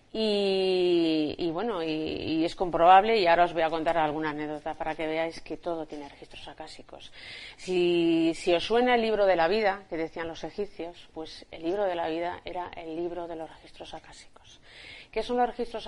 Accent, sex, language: Spanish, female, Spanish